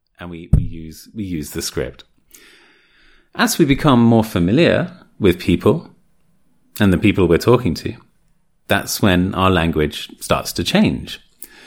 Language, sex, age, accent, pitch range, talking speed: English, male, 30-49, British, 85-115 Hz, 145 wpm